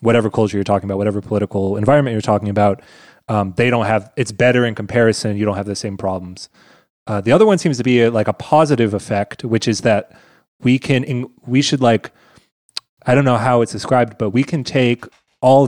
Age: 20-39